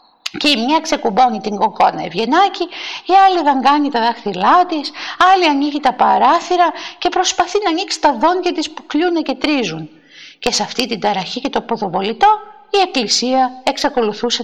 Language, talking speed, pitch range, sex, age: Greek, 160 wpm, 215-310 Hz, female, 50-69